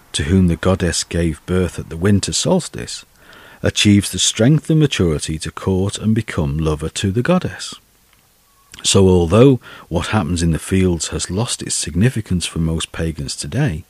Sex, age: male, 50-69